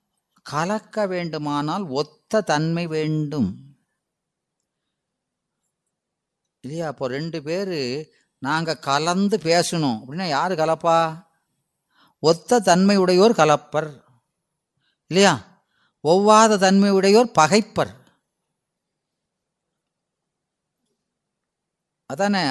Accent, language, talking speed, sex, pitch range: native, Tamil, 60 wpm, female, 130-185 Hz